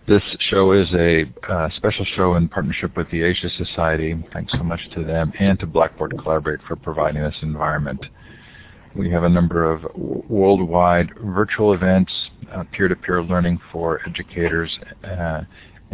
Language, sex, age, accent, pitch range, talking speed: English, male, 50-69, American, 85-95 Hz, 150 wpm